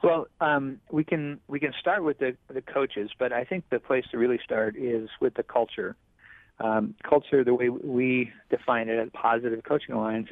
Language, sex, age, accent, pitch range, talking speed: English, male, 40-59, American, 115-140 Hz, 200 wpm